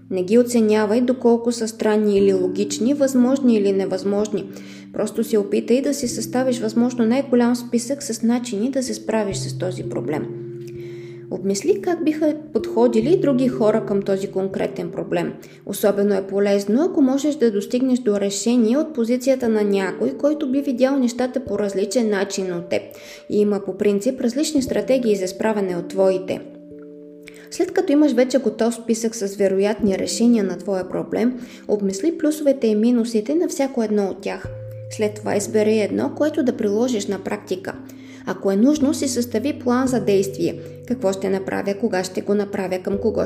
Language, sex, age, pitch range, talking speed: Bulgarian, female, 20-39, 195-255 Hz, 165 wpm